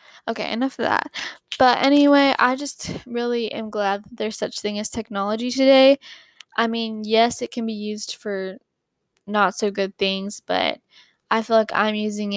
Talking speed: 160 wpm